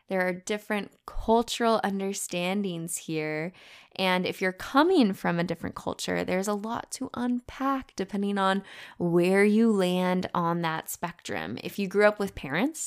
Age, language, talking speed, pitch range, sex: 10-29, English, 155 wpm, 175-225 Hz, female